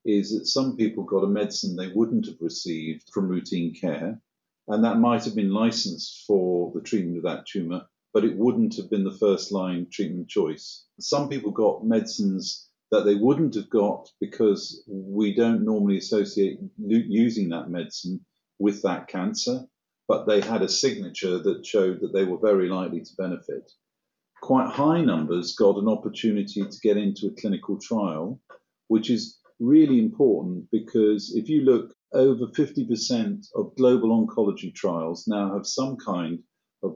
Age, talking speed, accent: 50-69, 165 wpm, British